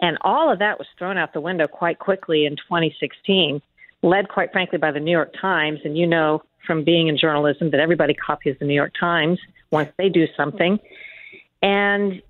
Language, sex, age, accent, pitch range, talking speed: English, female, 50-69, American, 160-200 Hz, 195 wpm